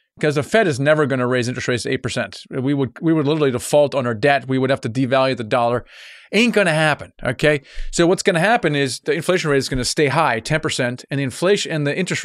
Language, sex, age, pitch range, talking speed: English, male, 30-49, 130-165 Hz, 260 wpm